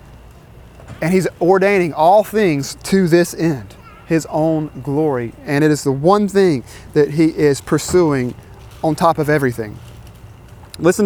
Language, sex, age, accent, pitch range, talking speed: English, male, 30-49, American, 135-175 Hz, 140 wpm